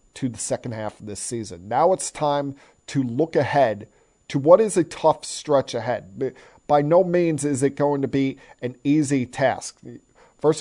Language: English